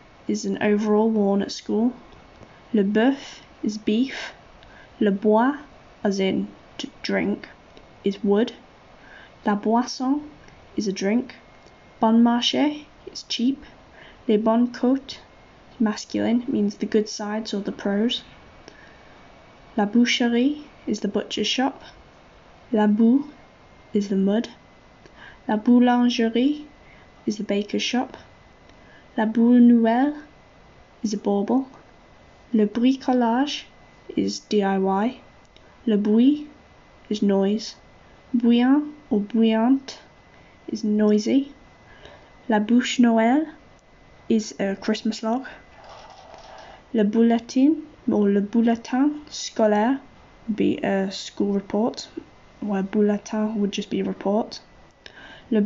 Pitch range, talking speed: 210-255 Hz, 110 wpm